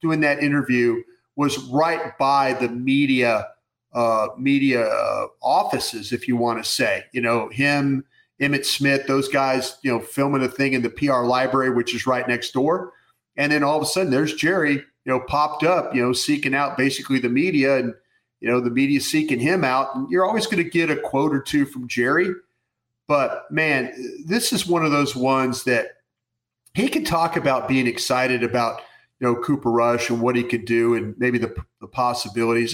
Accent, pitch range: American, 120-150 Hz